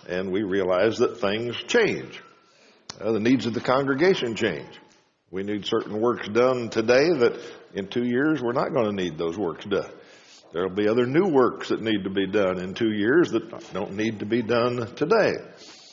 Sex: male